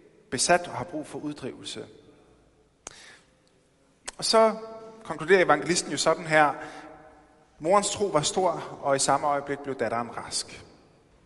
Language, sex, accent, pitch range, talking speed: Danish, male, native, 125-190 Hz, 130 wpm